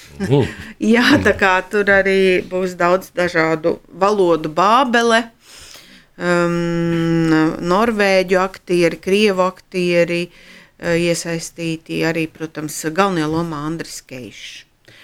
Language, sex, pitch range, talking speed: Russian, female, 165-200 Hz, 90 wpm